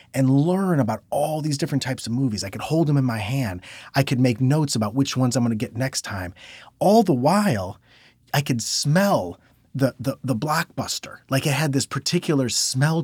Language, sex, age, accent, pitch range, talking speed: English, male, 30-49, American, 115-150 Hz, 205 wpm